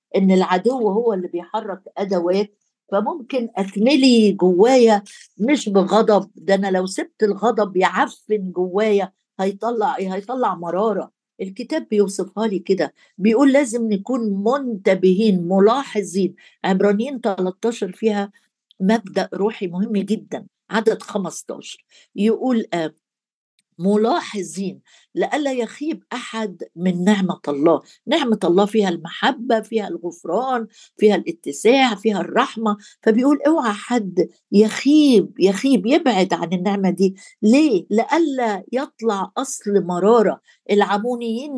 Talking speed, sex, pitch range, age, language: 105 wpm, female, 190-235 Hz, 50-69, Arabic